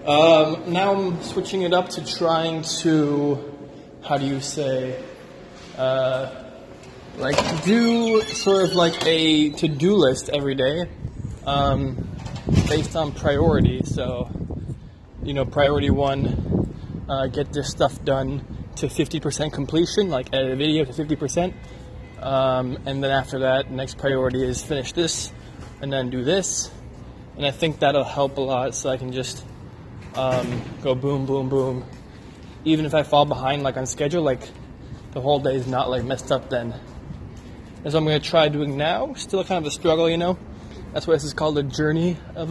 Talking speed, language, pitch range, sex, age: 165 wpm, English, 130-160 Hz, male, 20-39